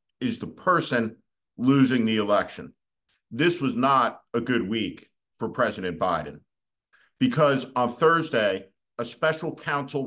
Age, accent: 50-69, American